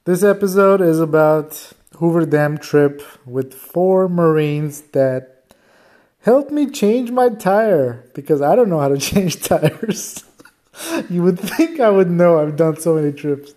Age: 30-49